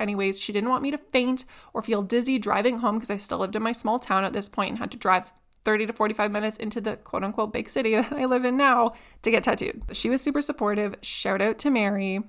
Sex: female